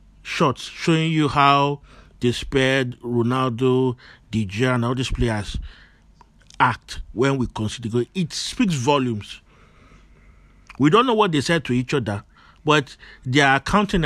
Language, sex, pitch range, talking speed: English, male, 115-160 Hz, 130 wpm